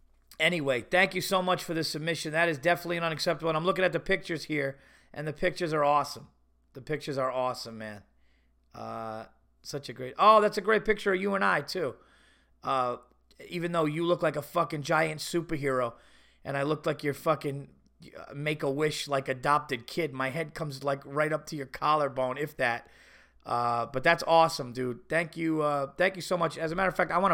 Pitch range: 125-170 Hz